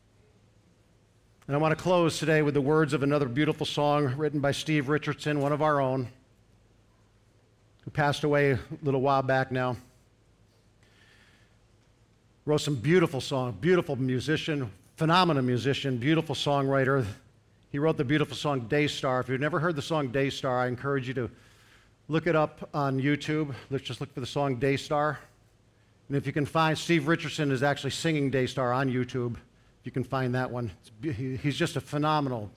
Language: English